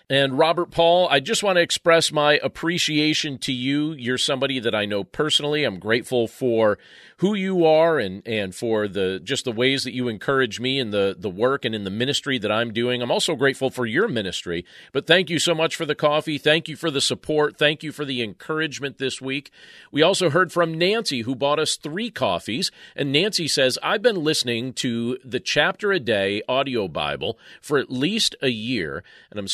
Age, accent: 40-59, American